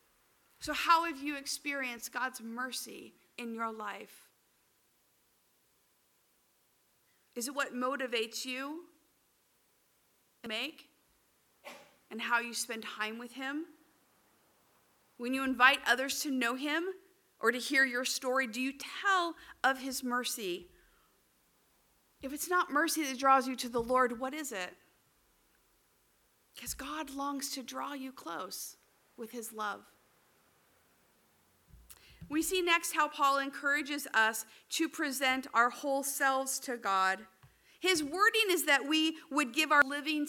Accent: American